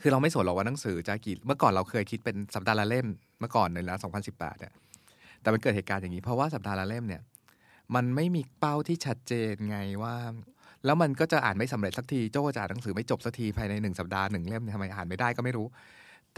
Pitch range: 105-140 Hz